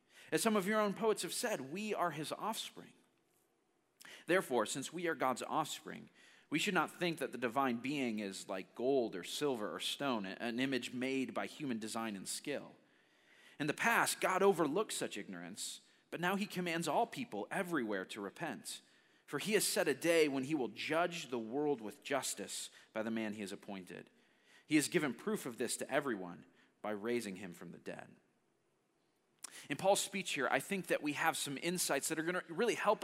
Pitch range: 140-215 Hz